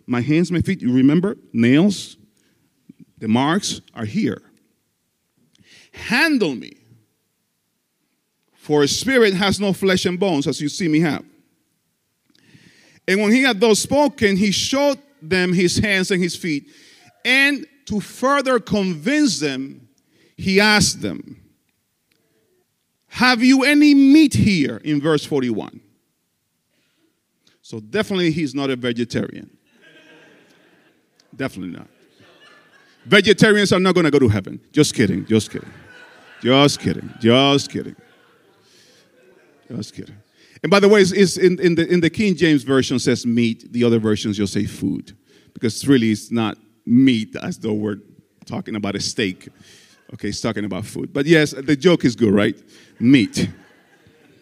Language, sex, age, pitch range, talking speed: English, male, 40-59, 135-220 Hz, 145 wpm